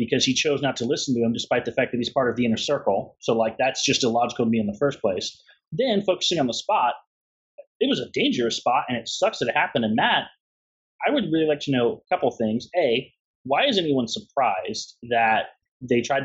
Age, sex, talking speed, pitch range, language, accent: 30-49, male, 235 wpm, 120-170 Hz, English, American